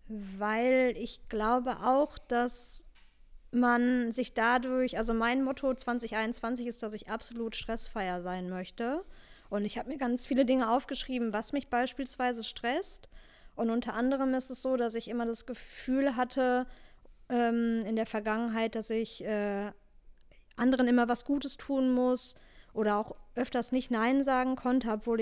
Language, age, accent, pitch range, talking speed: German, 20-39, German, 220-250 Hz, 150 wpm